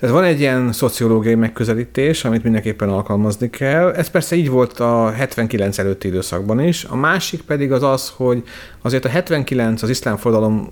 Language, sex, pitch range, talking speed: Hungarian, male, 100-125 Hz, 170 wpm